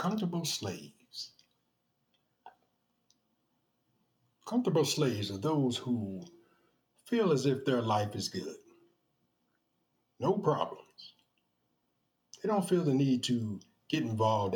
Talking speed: 100 wpm